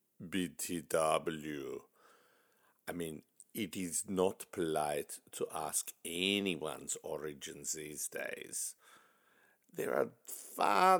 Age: 60-79